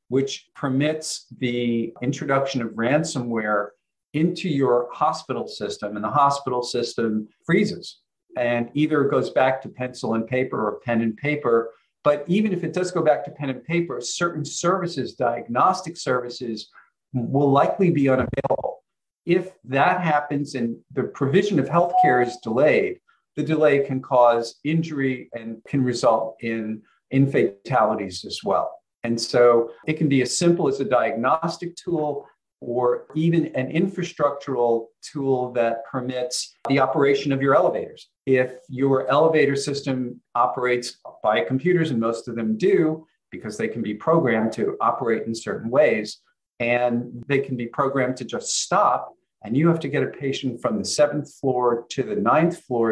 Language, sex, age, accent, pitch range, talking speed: English, male, 50-69, American, 120-150 Hz, 155 wpm